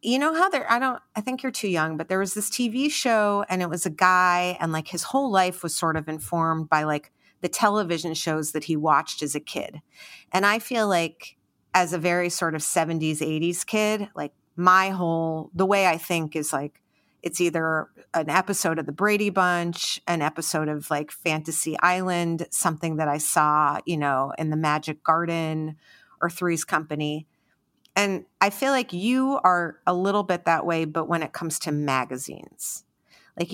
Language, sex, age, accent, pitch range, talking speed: English, female, 30-49, American, 155-185 Hz, 195 wpm